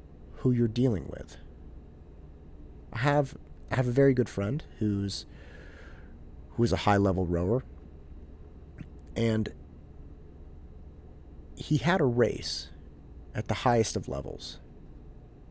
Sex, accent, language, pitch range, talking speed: male, American, English, 75-115 Hz, 110 wpm